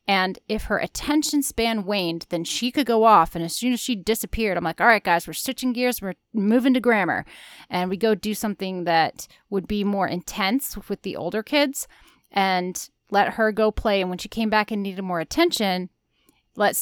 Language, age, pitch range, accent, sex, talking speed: English, 30-49, 180-220 Hz, American, female, 205 wpm